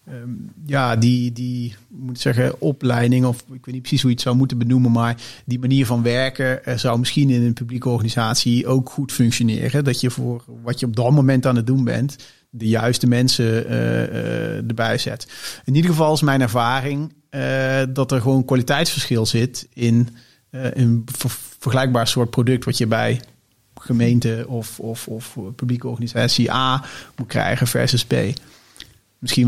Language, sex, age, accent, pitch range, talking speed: Dutch, male, 40-59, Dutch, 115-130 Hz, 180 wpm